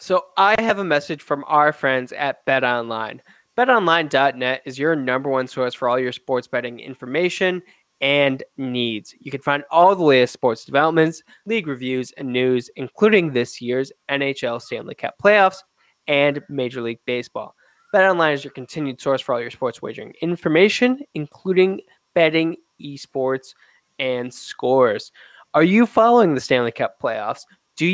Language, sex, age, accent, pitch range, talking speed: English, male, 10-29, American, 130-180 Hz, 155 wpm